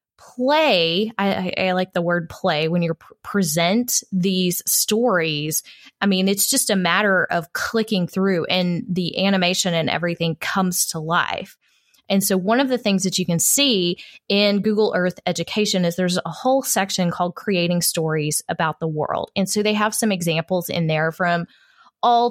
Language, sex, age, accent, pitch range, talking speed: English, female, 20-39, American, 170-200 Hz, 175 wpm